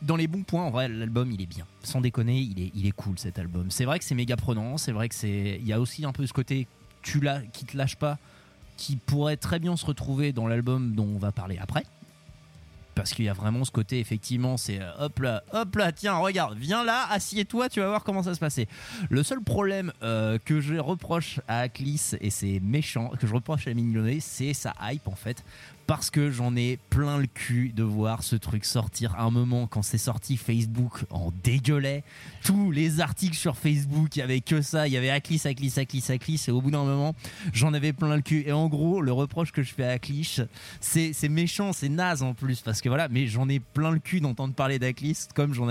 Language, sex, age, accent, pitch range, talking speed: French, male, 20-39, French, 115-150 Hz, 240 wpm